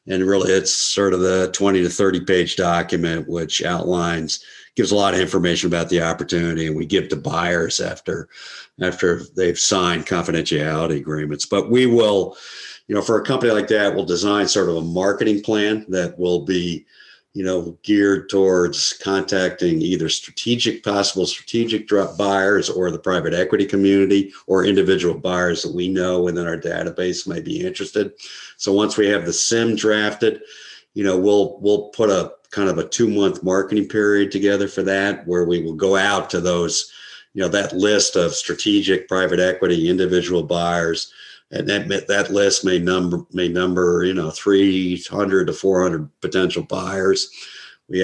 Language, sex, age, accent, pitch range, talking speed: English, male, 50-69, American, 90-100 Hz, 170 wpm